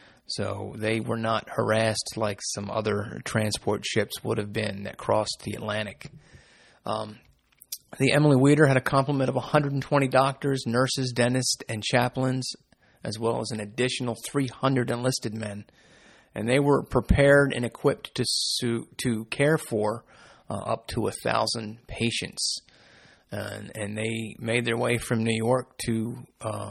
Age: 30-49